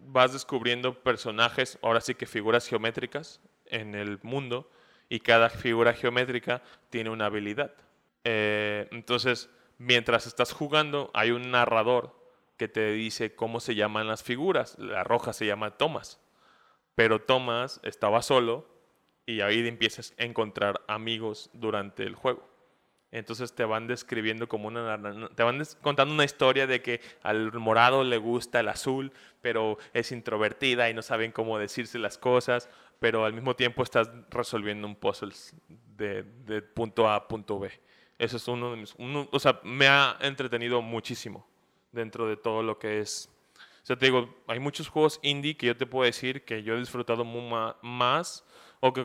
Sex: male